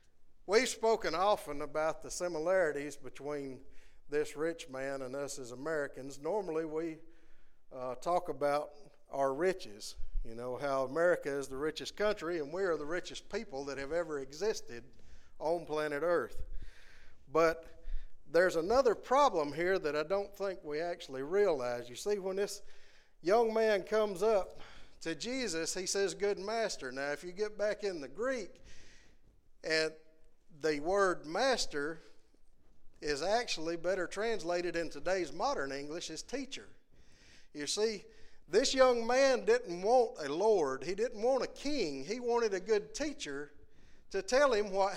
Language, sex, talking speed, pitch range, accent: English, male, 150 wpm, 145-225 Hz, American